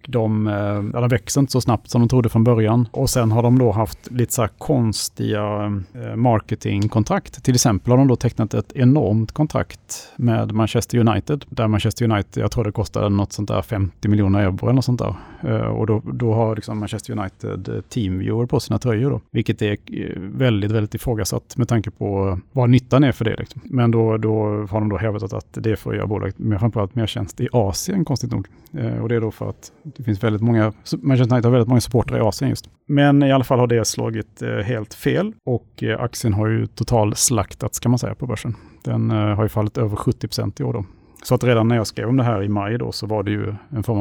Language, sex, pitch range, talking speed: Swedish, male, 105-125 Hz, 225 wpm